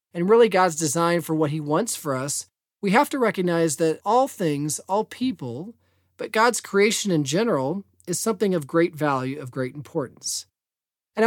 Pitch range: 130-195 Hz